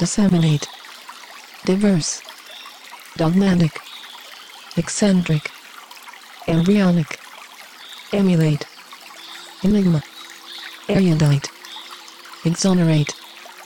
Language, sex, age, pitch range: French, female, 40-59, 155-200 Hz